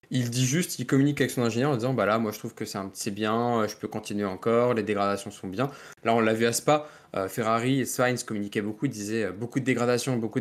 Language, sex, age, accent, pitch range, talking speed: French, male, 20-39, French, 105-130 Hz, 275 wpm